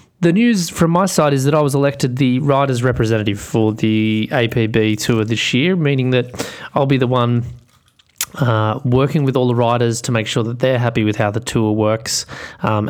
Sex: male